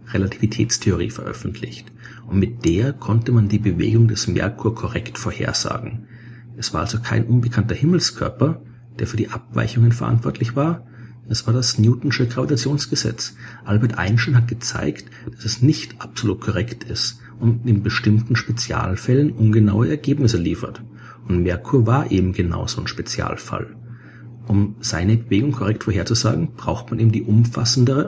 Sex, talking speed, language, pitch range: male, 140 wpm, German, 105-120 Hz